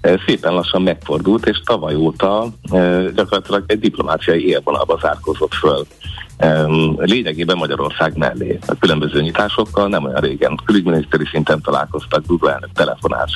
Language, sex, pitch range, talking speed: Hungarian, male, 75-90 Hz, 120 wpm